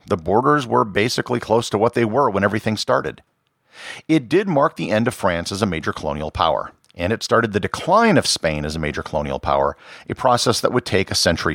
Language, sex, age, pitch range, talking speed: English, male, 50-69, 90-125 Hz, 225 wpm